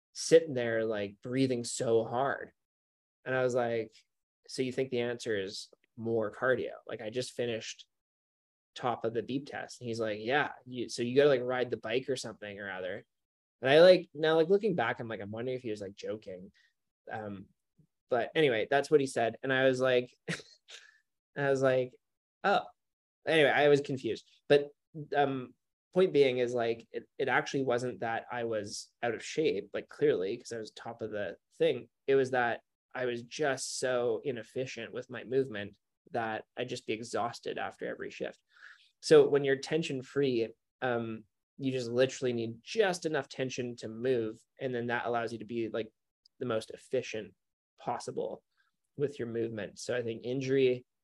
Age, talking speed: 20-39, 185 wpm